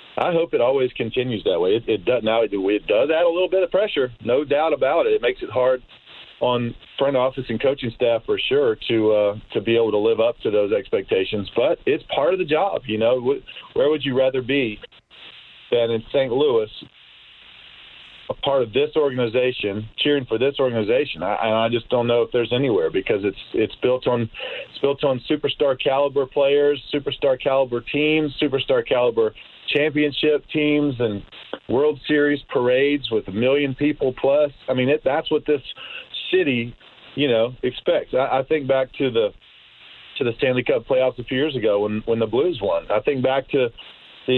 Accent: American